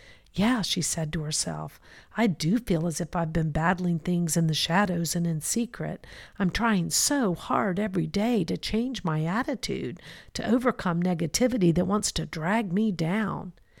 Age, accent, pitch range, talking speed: 50-69, American, 170-235 Hz, 170 wpm